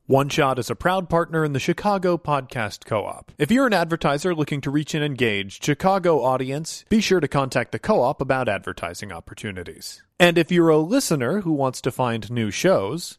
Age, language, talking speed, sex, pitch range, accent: 30-49, English, 185 wpm, male, 120-175 Hz, American